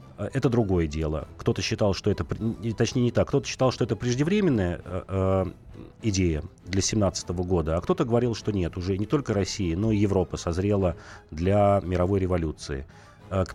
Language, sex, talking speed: Russian, male, 165 wpm